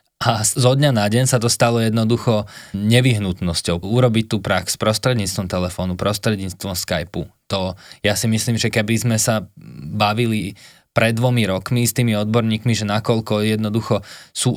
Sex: male